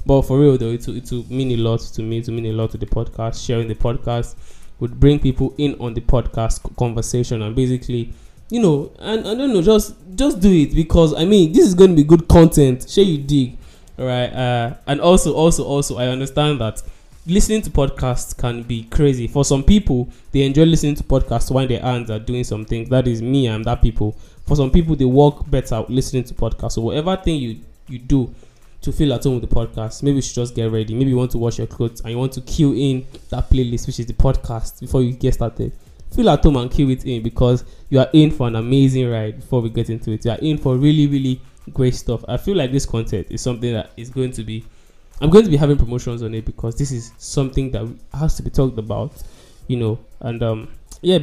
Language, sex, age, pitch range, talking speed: English, male, 10-29, 115-140 Hz, 240 wpm